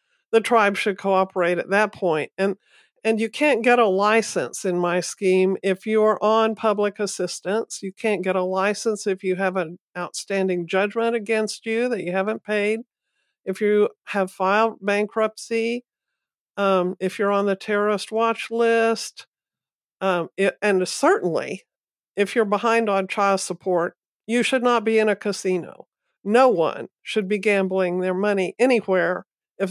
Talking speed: 155 wpm